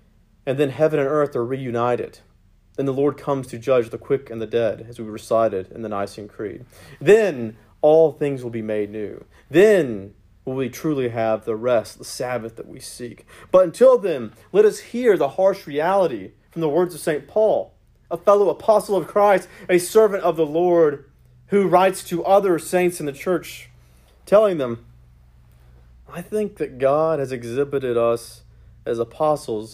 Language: English